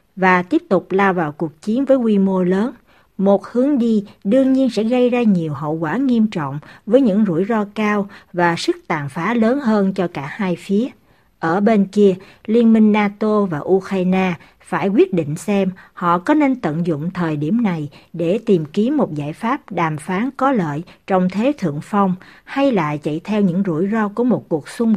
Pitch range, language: 175-225 Hz, Vietnamese